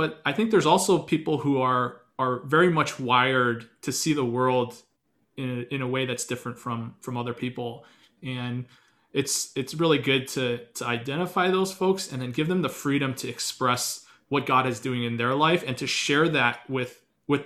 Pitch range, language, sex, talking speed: 125-145 Hz, English, male, 195 wpm